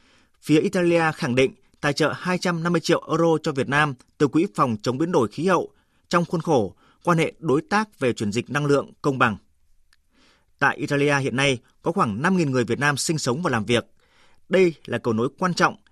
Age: 30-49